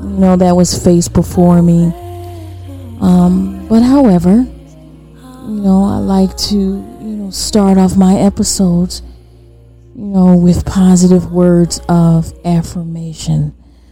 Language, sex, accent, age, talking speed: English, female, American, 30-49, 120 wpm